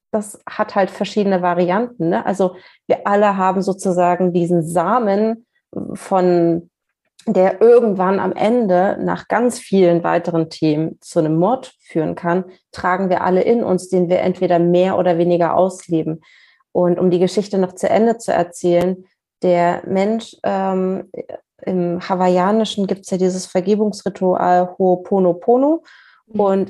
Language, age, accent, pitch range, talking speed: German, 30-49, German, 180-210 Hz, 135 wpm